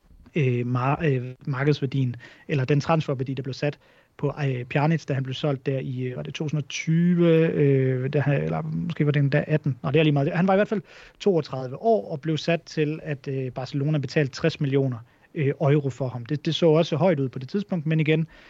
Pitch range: 135-160 Hz